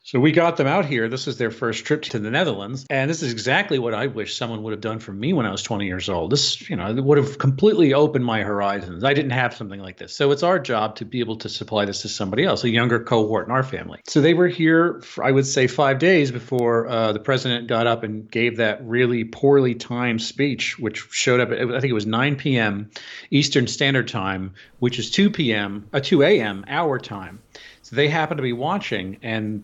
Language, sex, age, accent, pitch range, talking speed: English, male, 40-59, American, 110-140 Hz, 235 wpm